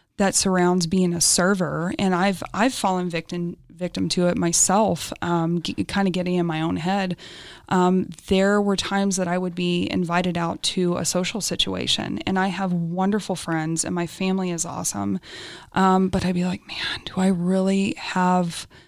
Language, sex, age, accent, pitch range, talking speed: English, female, 20-39, American, 175-200 Hz, 180 wpm